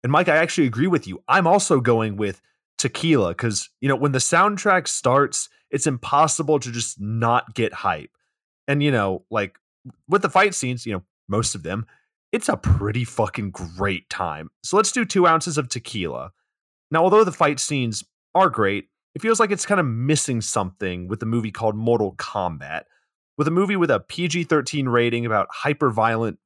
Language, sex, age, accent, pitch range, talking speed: English, male, 30-49, American, 105-145 Hz, 185 wpm